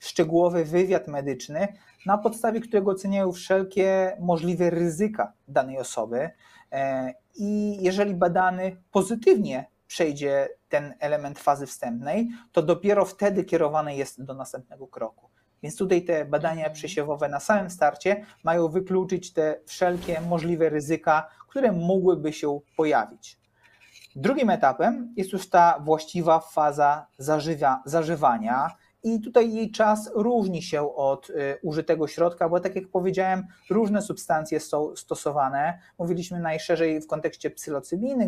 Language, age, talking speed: Polish, 30-49, 120 wpm